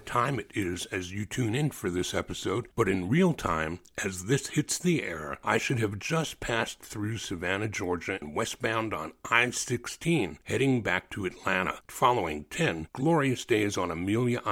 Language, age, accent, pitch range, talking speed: English, 60-79, American, 90-125 Hz, 170 wpm